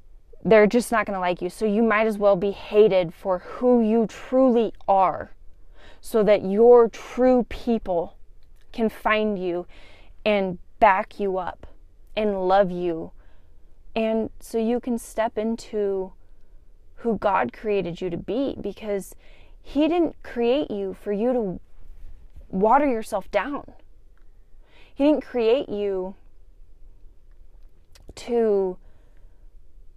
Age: 20-39